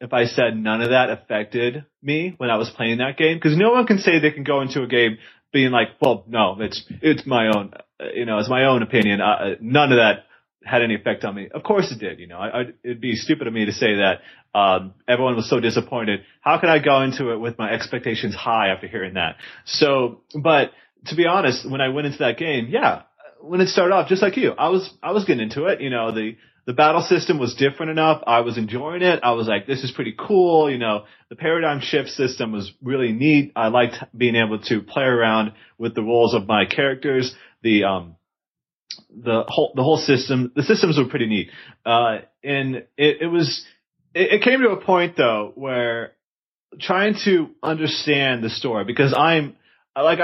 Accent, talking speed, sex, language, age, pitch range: American, 220 wpm, male, English, 30-49, 115-155 Hz